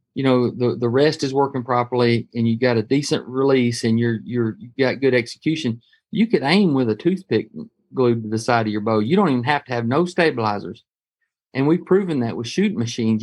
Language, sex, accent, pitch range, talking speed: English, male, American, 115-140 Hz, 220 wpm